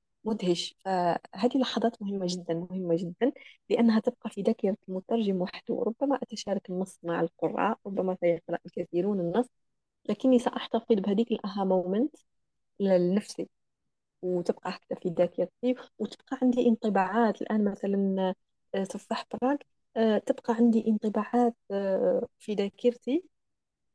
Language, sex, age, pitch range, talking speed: Arabic, female, 20-39, 185-230 Hz, 120 wpm